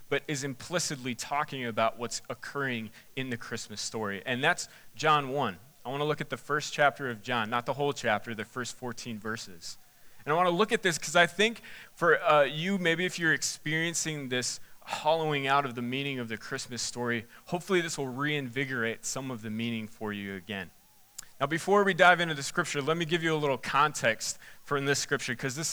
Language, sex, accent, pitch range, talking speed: English, male, American, 125-165 Hz, 210 wpm